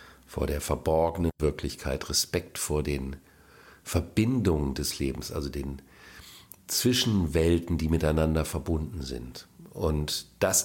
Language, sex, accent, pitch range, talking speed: German, male, German, 75-90 Hz, 105 wpm